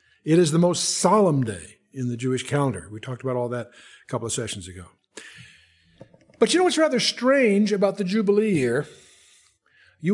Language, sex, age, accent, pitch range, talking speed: English, male, 60-79, American, 145-200 Hz, 185 wpm